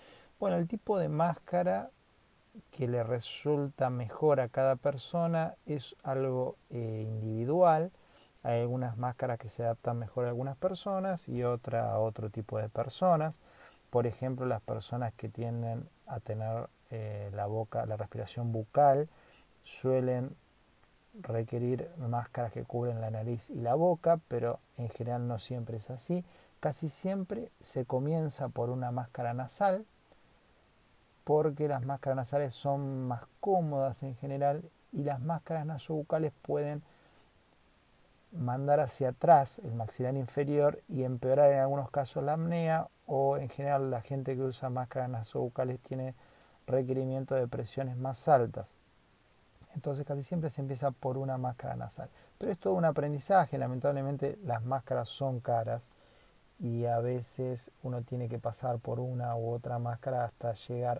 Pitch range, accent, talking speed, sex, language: 120-145 Hz, Argentinian, 145 wpm, male, Spanish